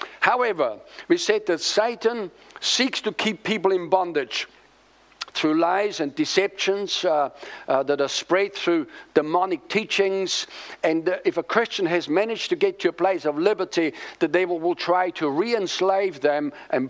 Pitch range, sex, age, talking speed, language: 170-245 Hz, male, 60-79, 160 wpm, English